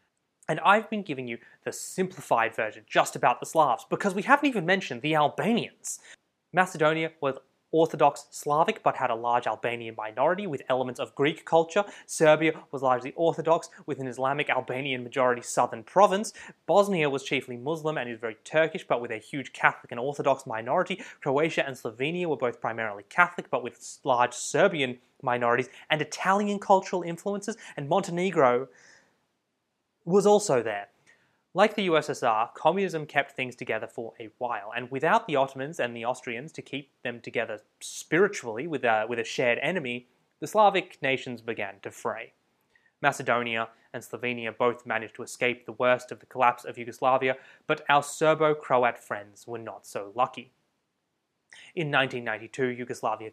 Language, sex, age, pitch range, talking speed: English, male, 20-39, 125-165 Hz, 155 wpm